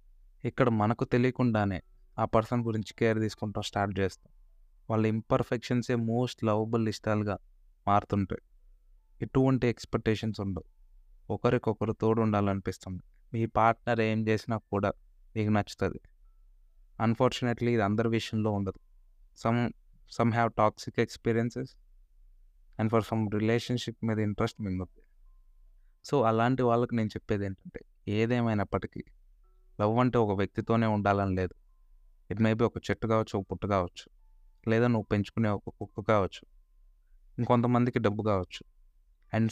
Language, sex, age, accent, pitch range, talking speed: Telugu, male, 20-39, native, 100-115 Hz, 115 wpm